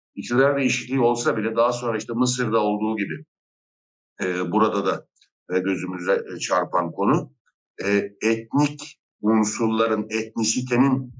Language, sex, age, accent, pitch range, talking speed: Turkish, male, 60-79, native, 105-140 Hz, 100 wpm